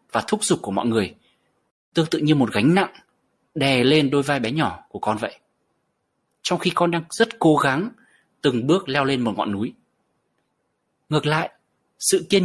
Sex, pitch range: male, 135-195 Hz